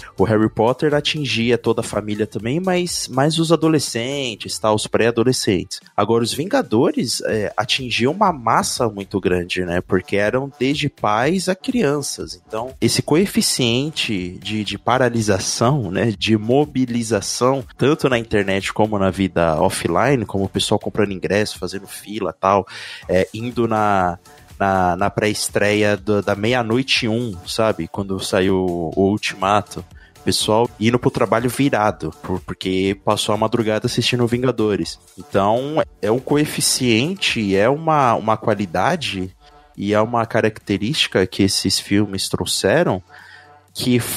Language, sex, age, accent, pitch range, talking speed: Portuguese, male, 20-39, Brazilian, 100-140 Hz, 135 wpm